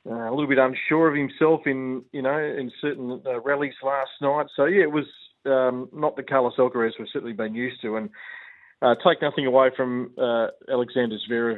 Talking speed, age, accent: 205 wpm, 40-59, Australian